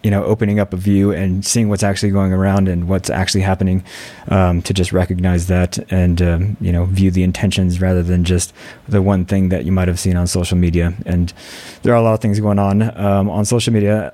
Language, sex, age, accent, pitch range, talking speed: English, male, 20-39, American, 95-105 Hz, 235 wpm